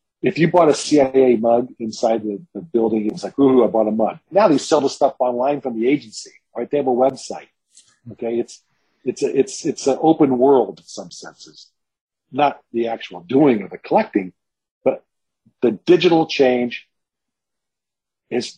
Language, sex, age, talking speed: English, male, 50-69, 180 wpm